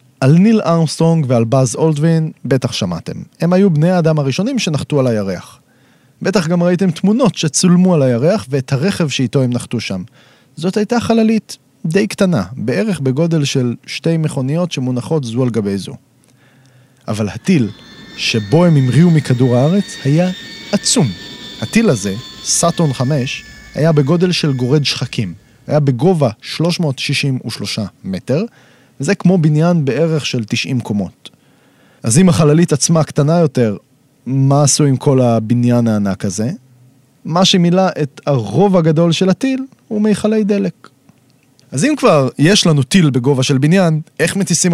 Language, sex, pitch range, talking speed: Hebrew, male, 130-180 Hz, 145 wpm